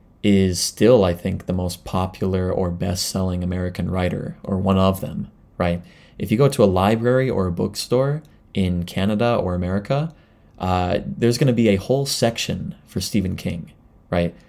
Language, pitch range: English, 95-115 Hz